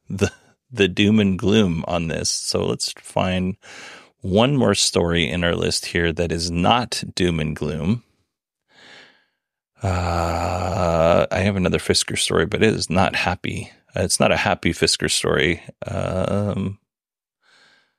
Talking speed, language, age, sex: 135 wpm, English, 30-49, male